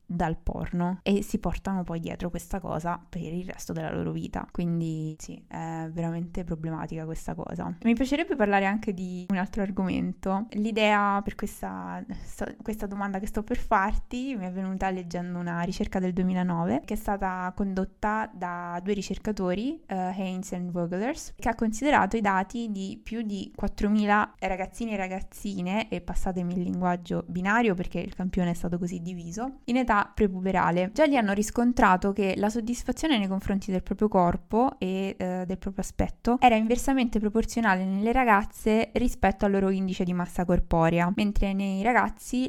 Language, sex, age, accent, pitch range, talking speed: Italian, female, 20-39, native, 175-215 Hz, 165 wpm